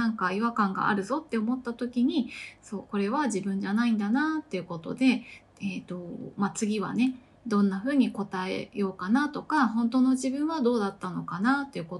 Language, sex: Japanese, female